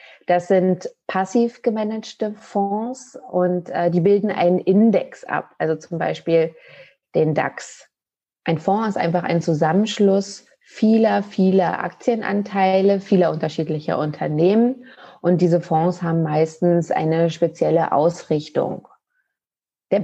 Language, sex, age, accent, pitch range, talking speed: German, female, 30-49, German, 170-205 Hz, 115 wpm